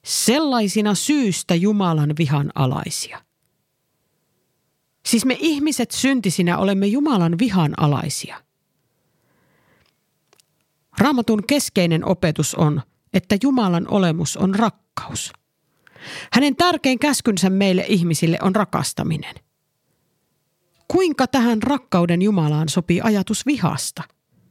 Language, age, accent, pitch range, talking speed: Finnish, 50-69, native, 165-235 Hz, 90 wpm